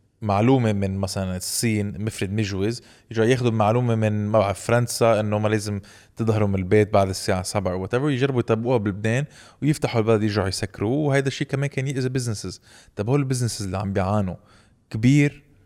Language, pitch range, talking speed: Arabic, 100-120 Hz, 155 wpm